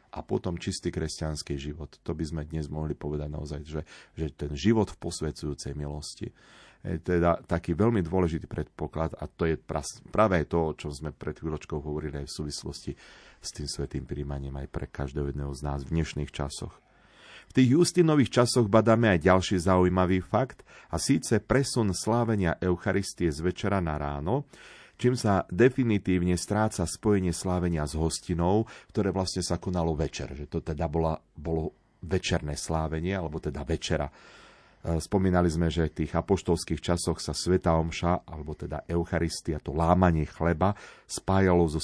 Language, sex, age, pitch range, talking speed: Slovak, male, 40-59, 75-100 Hz, 160 wpm